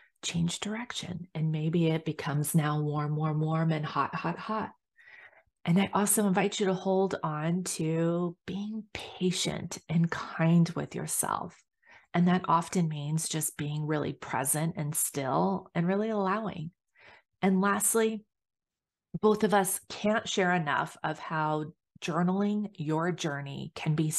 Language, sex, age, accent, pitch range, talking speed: English, female, 30-49, American, 155-195 Hz, 140 wpm